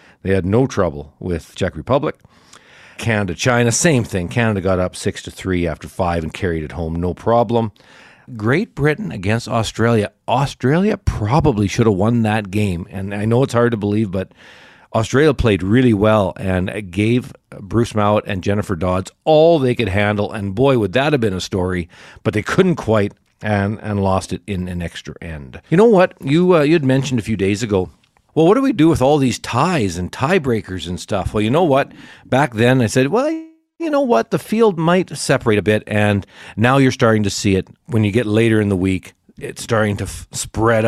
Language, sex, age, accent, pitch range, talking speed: English, male, 50-69, American, 95-125 Hz, 205 wpm